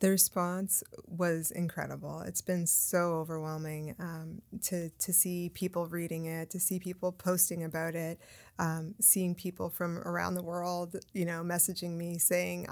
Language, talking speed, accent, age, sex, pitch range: English, 155 wpm, American, 20-39, female, 170-200 Hz